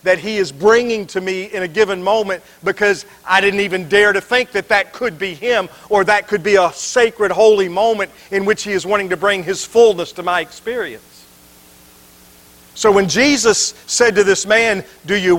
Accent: American